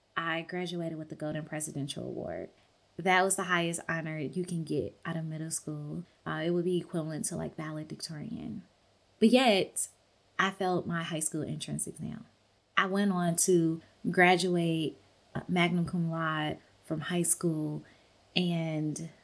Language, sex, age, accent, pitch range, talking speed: English, female, 20-39, American, 155-175 Hz, 155 wpm